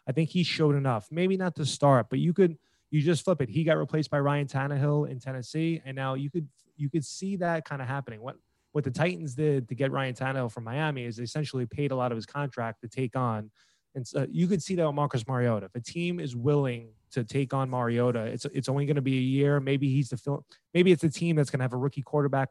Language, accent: English, American